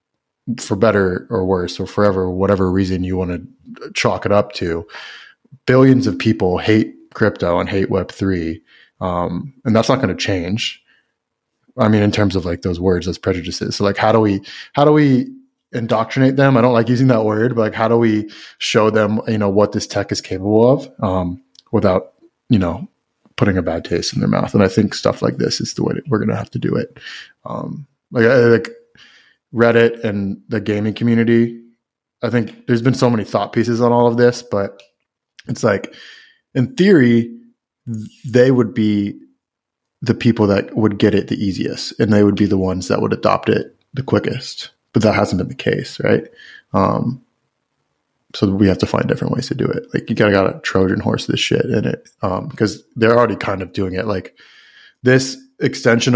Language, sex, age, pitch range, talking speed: English, male, 20-39, 100-120 Hz, 200 wpm